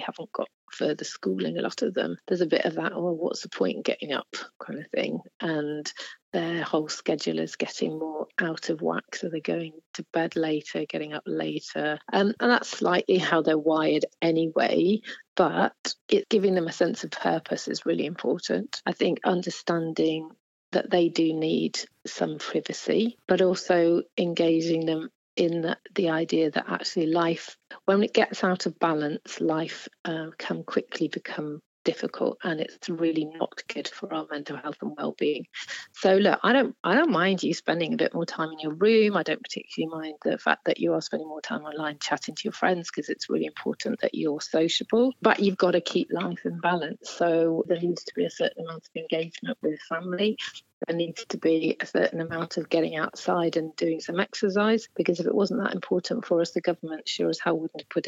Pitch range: 160-185 Hz